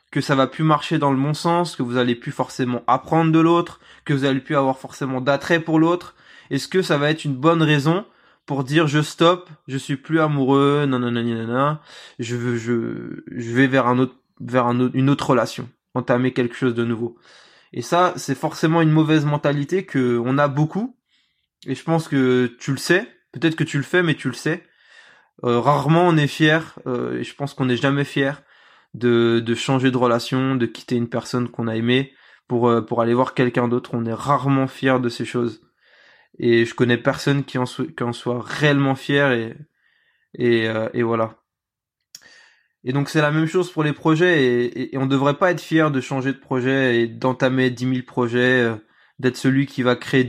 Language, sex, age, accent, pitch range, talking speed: French, male, 20-39, French, 125-150 Hz, 210 wpm